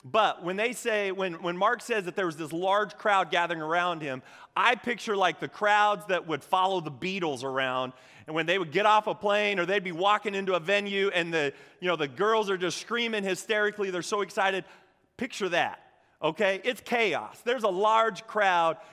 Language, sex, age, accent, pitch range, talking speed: English, male, 30-49, American, 160-215 Hz, 205 wpm